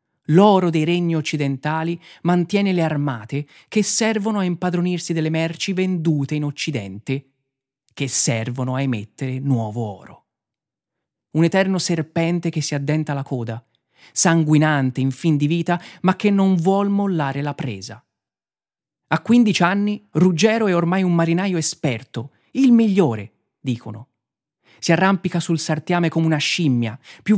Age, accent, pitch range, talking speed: 30-49, native, 135-185 Hz, 135 wpm